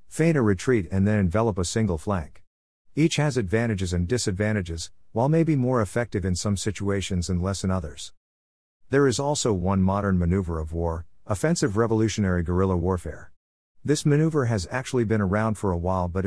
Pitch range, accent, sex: 90-115 Hz, American, male